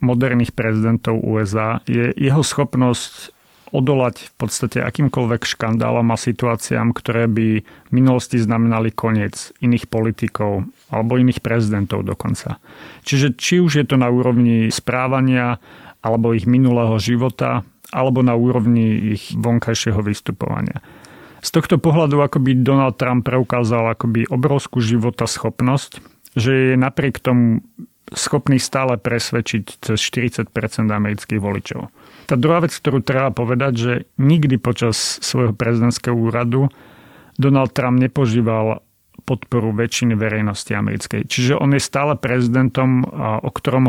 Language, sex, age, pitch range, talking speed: Slovak, male, 40-59, 115-130 Hz, 125 wpm